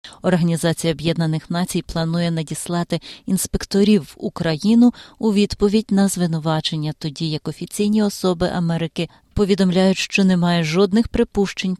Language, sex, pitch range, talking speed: Ukrainian, female, 165-205 Hz, 110 wpm